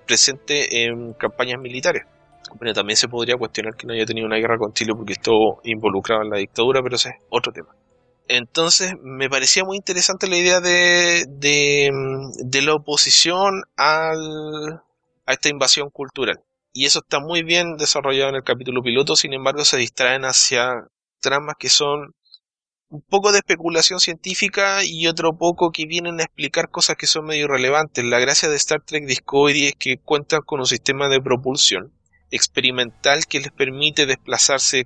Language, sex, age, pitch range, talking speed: Spanish, male, 20-39, 125-155 Hz, 170 wpm